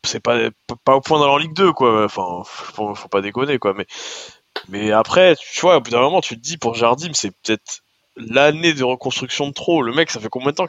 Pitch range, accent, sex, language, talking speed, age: 110-155 Hz, French, male, French, 245 wpm, 20-39